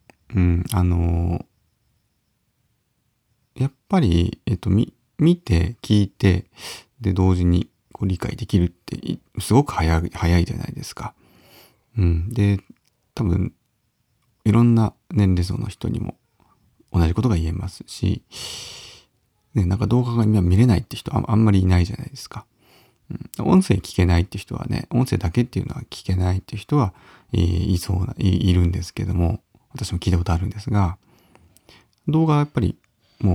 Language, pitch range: Japanese, 90-115 Hz